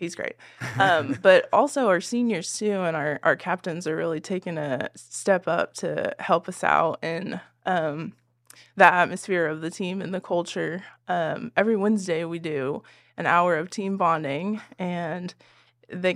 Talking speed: 165 wpm